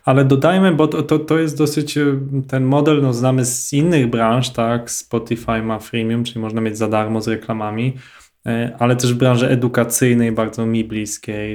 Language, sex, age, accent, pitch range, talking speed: Polish, male, 20-39, native, 115-135 Hz, 175 wpm